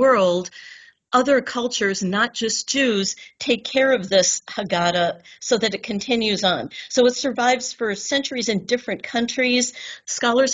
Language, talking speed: English, 140 wpm